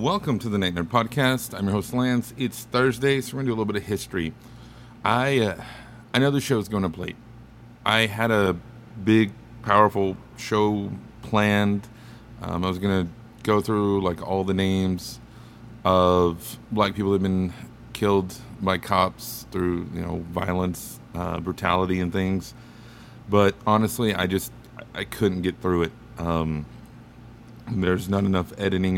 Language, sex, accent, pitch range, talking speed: English, male, American, 95-115 Hz, 160 wpm